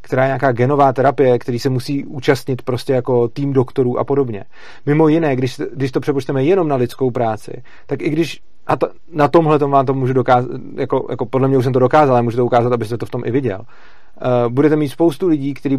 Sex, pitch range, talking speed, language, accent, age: male, 125-150 Hz, 230 wpm, Czech, native, 30-49